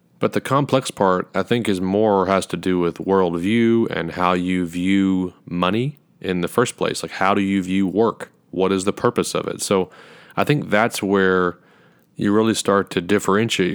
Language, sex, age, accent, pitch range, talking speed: English, male, 30-49, American, 90-110 Hz, 190 wpm